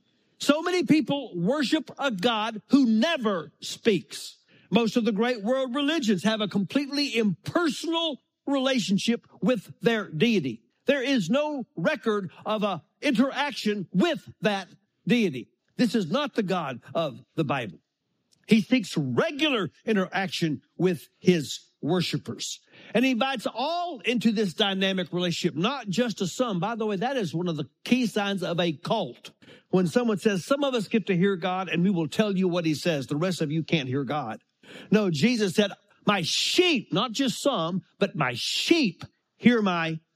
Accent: American